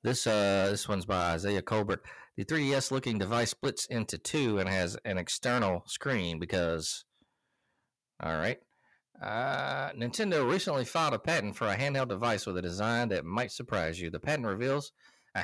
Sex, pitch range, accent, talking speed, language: male, 100-130 Hz, American, 165 wpm, English